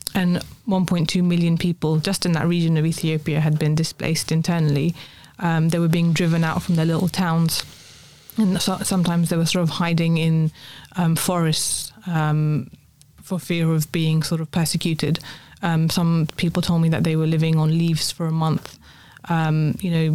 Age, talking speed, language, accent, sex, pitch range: 20-39, 175 wpm, English, British, female, 160-175 Hz